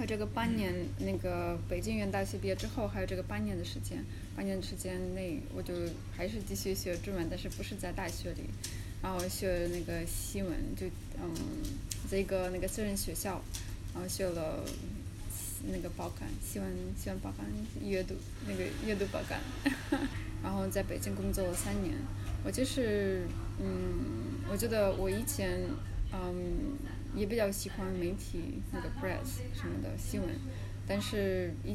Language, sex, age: Chinese, female, 10-29